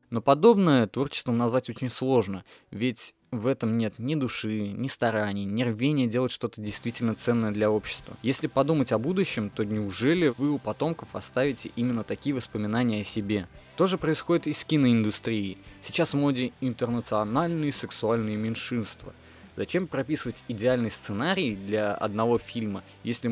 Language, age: Russian, 20-39